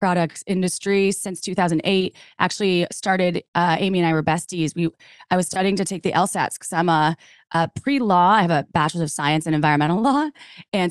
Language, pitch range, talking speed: English, 165-195 Hz, 195 wpm